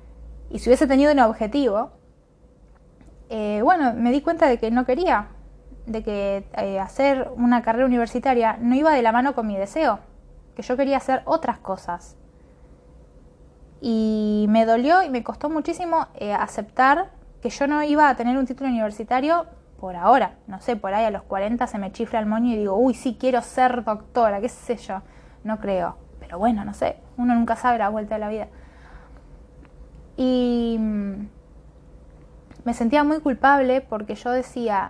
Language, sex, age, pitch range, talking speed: Spanish, female, 10-29, 200-255 Hz, 170 wpm